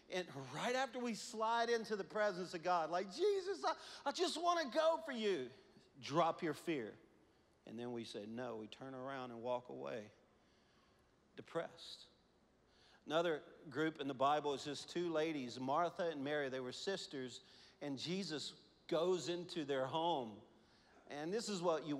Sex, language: male, English